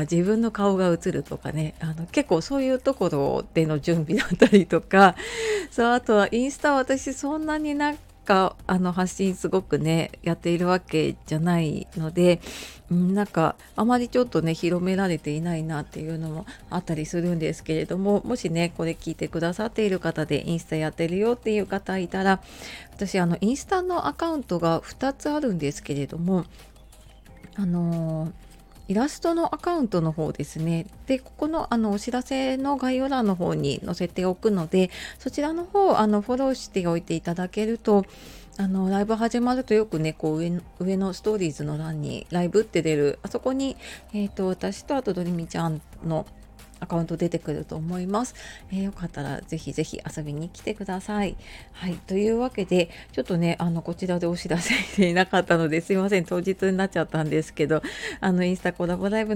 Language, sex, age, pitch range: Japanese, female, 30-49, 165-220 Hz